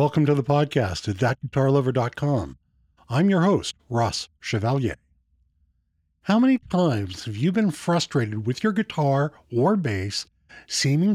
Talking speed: 130 wpm